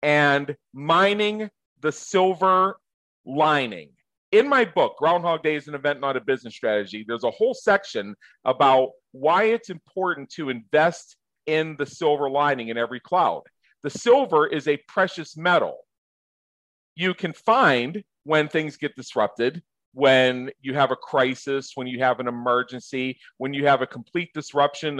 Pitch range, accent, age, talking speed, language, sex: 130-175 Hz, American, 40-59, 150 wpm, English, male